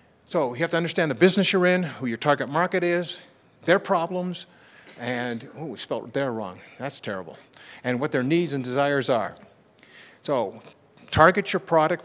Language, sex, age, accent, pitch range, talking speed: English, male, 50-69, American, 125-160 Hz, 175 wpm